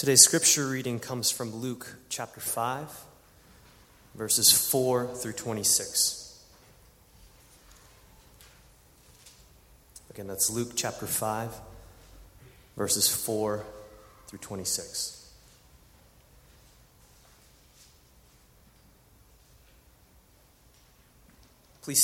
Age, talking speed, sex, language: 30-49, 60 wpm, male, English